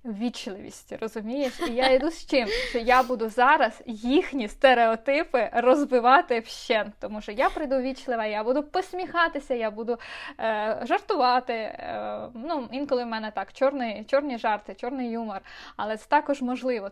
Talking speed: 150 wpm